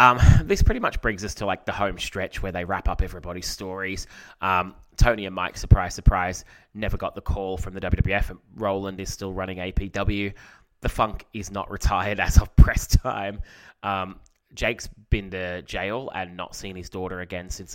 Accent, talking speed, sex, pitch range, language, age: Australian, 190 wpm, male, 90-105 Hz, English, 20-39